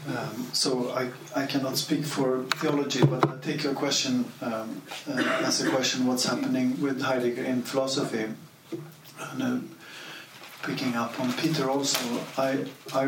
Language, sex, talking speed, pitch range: English, male, 145 wpm, 120-140 Hz